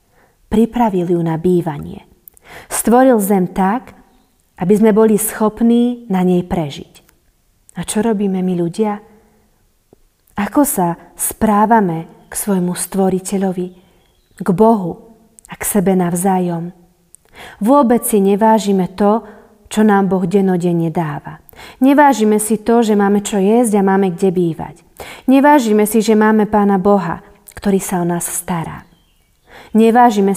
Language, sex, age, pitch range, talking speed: Slovak, female, 30-49, 180-225 Hz, 125 wpm